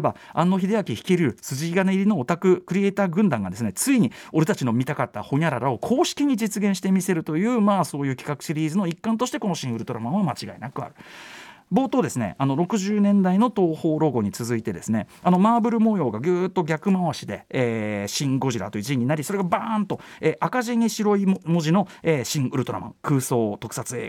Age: 40-59